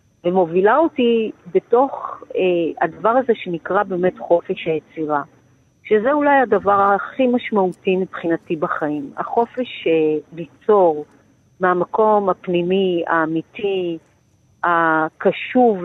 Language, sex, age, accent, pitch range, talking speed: Hebrew, female, 50-69, native, 170-220 Hz, 90 wpm